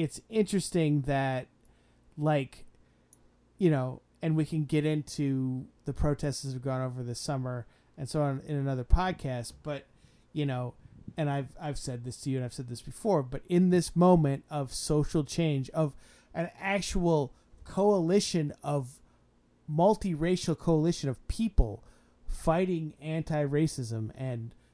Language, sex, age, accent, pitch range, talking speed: English, male, 30-49, American, 130-165 Hz, 145 wpm